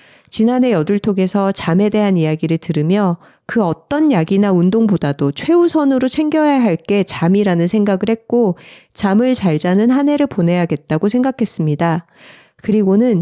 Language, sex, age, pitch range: Korean, female, 40-59, 170-250 Hz